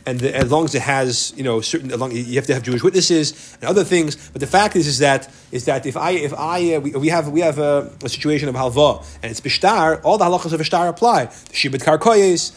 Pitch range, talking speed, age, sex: 140-175 Hz, 260 wpm, 30-49, male